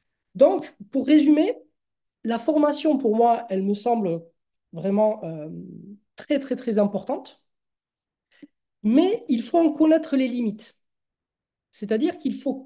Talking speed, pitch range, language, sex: 125 wpm, 205-275 Hz, French, male